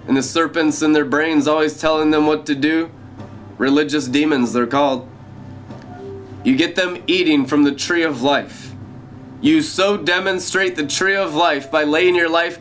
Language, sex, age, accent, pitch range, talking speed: English, male, 20-39, American, 135-170 Hz, 170 wpm